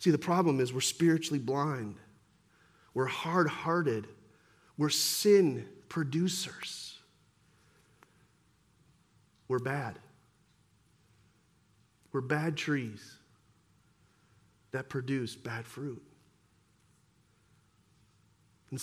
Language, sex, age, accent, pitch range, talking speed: English, male, 40-59, American, 110-150 Hz, 70 wpm